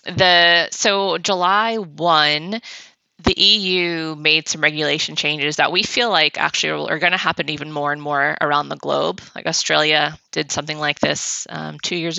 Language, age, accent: English, 20-39, American